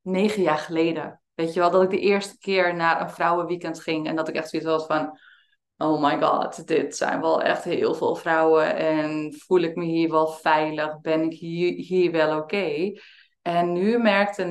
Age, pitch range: 20-39, 165-195 Hz